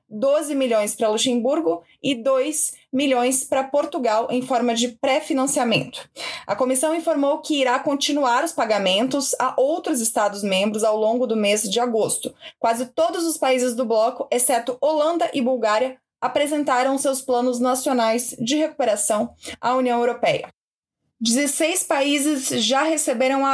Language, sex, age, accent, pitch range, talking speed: Portuguese, female, 20-39, Brazilian, 235-295 Hz, 140 wpm